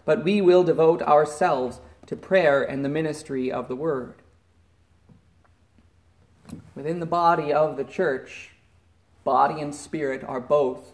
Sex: male